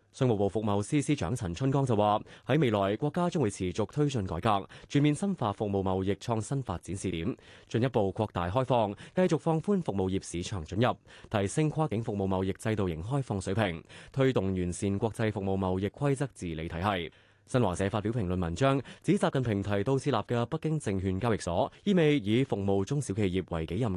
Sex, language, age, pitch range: male, Chinese, 20-39, 95-130 Hz